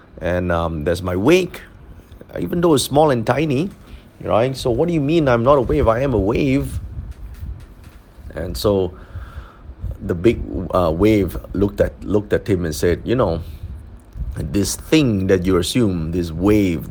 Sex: male